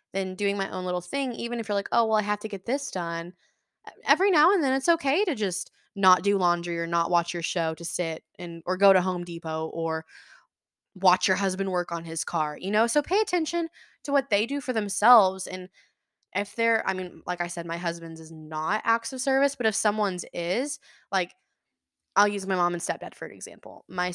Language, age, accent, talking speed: English, 20-39, American, 225 wpm